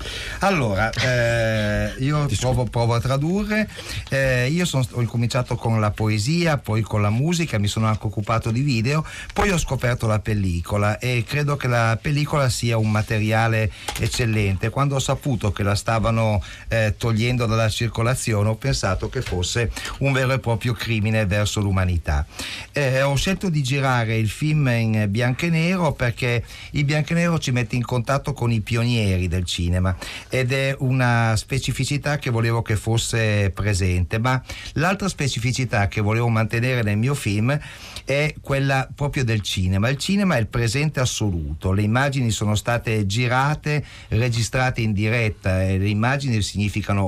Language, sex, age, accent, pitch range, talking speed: Italian, male, 50-69, native, 105-130 Hz, 160 wpm